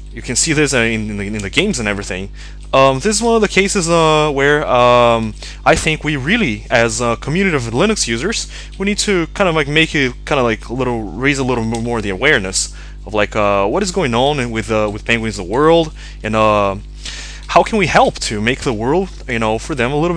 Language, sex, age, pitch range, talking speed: English, male, 20-39, 110-165 Hz, 240 wpm